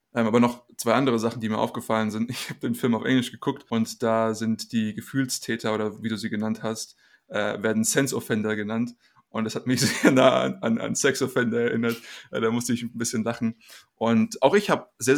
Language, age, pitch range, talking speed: German, 20-39, 110-125 Hz, 215 wpm